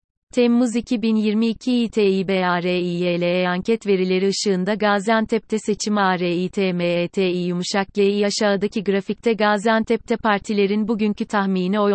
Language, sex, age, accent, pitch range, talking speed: Turkish, female, 30-49, native, 190-220 Hz, 105 wpm